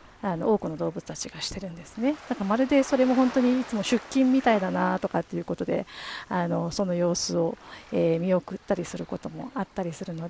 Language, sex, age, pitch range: Japanese, female, 40-59, 180-235 Hz